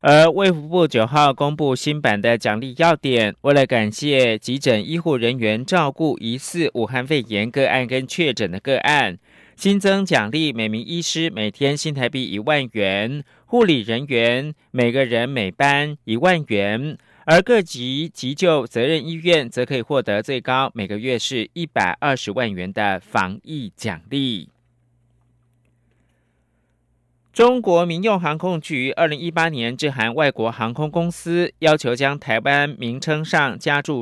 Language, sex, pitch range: German, male, 120-160 Hz